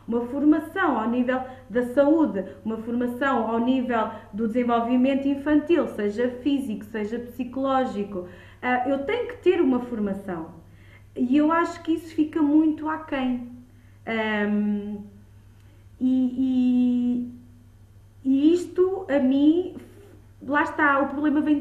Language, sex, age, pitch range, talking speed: Portuguese, female, 20-39, 225-315 Hz, 115 wpm